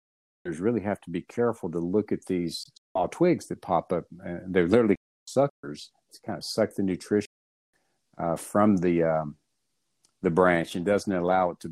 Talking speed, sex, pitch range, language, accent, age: 180 wpm, male, 85-100 Hz, English, American, 50-69